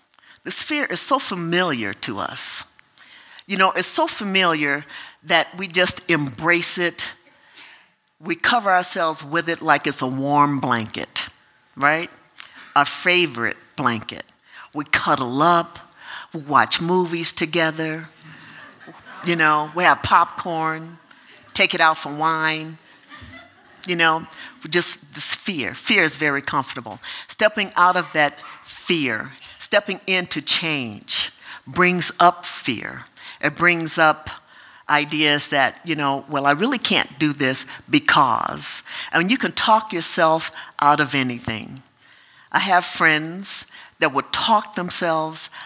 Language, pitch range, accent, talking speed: English, 145-180 Hz, American, 125 wpm